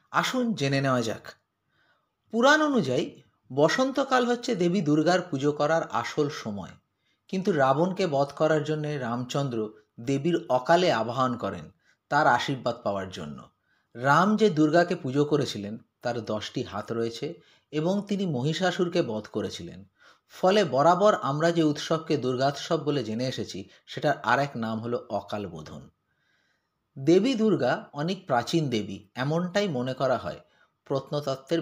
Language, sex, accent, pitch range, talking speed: Bengali, male, native, 130-195 Hz, 130 wpm